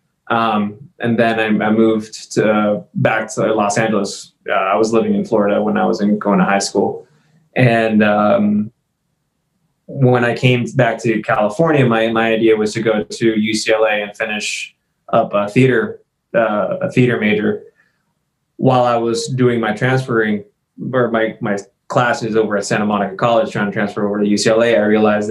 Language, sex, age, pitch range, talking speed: English, male, 20-39, 110-125 Hz, 175 wpm